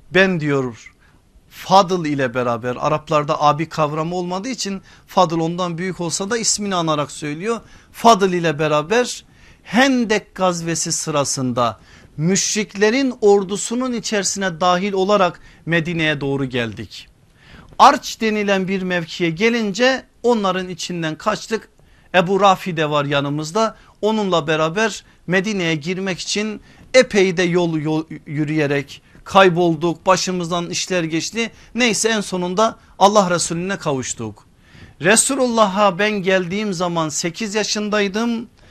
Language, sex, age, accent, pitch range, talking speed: Turkish, male, 50-69, native, 155-215 Hz, 110 wpm